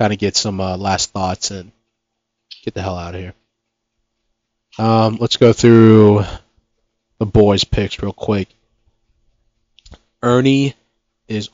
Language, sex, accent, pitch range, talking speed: English, male, American, 105-115 Hz, 130 wpm